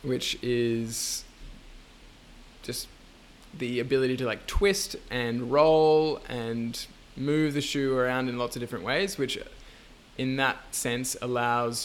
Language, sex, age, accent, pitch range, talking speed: English, male, 20-39, Australian, 120-140 Hz, 125 wpm